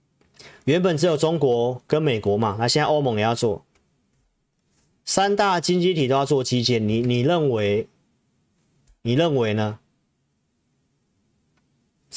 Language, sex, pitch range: Chinese, male, 115-155 Hz